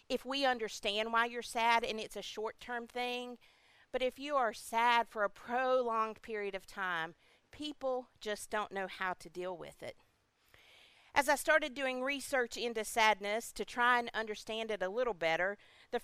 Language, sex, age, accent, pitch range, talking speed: English, female, 50-69, American, 200-260 Hz, 175 wpm